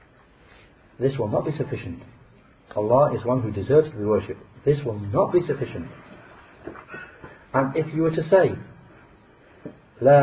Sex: male